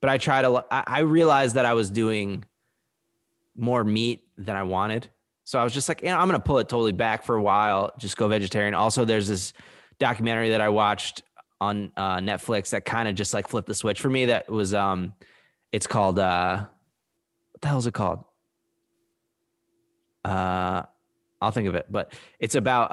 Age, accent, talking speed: 20-39, American, 195 wpm